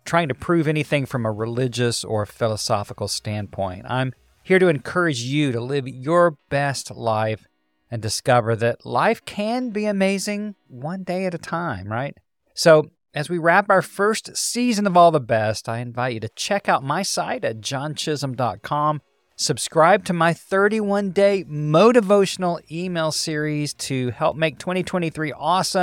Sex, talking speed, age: male, 150 wpm, 40-59